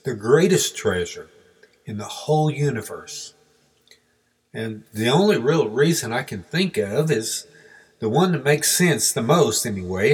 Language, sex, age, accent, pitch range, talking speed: English, male, 50-69, American, 110-145 Hz, 150 wpm